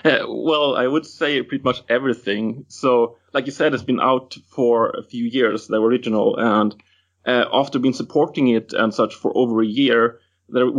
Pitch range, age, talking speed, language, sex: 110-125 Hz, 30-49, 190 wpm, English, male